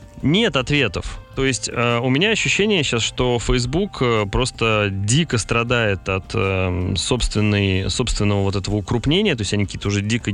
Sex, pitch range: male, 100-125 Hz